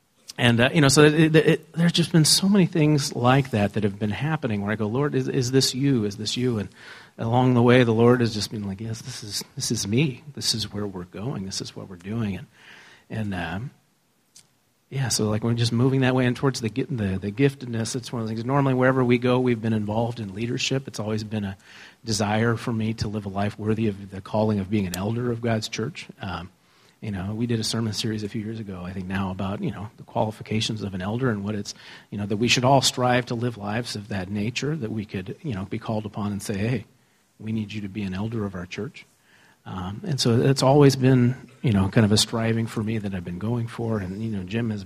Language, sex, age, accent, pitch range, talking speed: English, male, 40-59, American, 105-125 Hz, 260 wpm